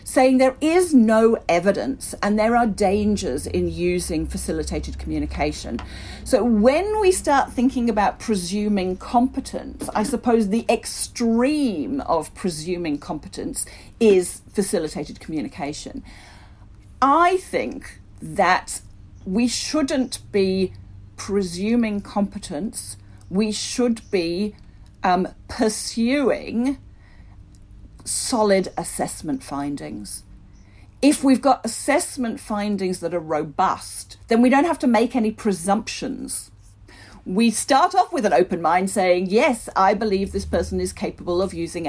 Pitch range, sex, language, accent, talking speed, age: 170-245 Hz, female, English, British, 115 wpm, 40-59